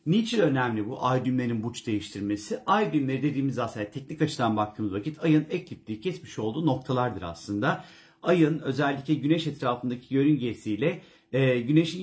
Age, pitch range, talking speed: 50-69, 120-160 Hz, 135 wpm